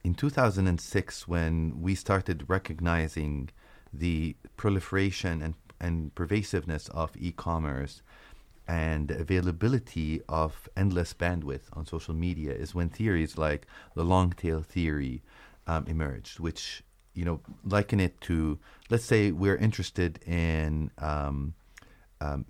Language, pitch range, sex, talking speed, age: English, 80-100 Hz, male, 115 wpm, 30-49